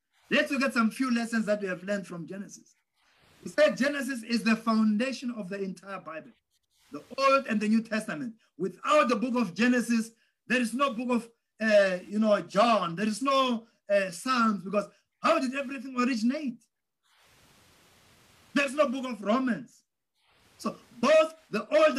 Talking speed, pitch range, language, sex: 165 wpm, 210-265 Hz, English, male